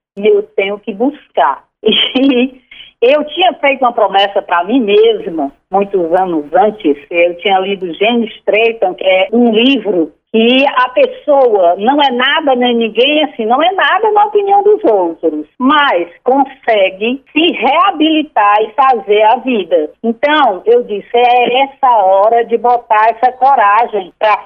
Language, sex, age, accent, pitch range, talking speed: Portuguese, female, 50-69, Brazilian, 210-275 Hz, 150 wpm